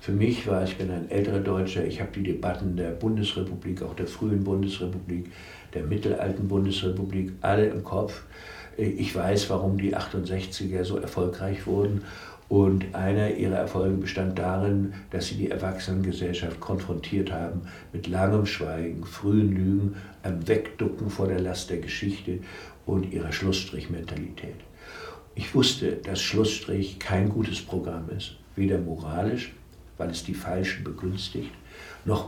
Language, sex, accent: German, male, German